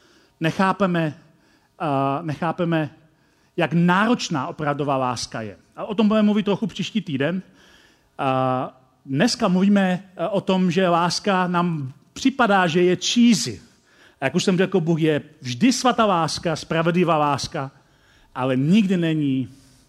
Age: 40-59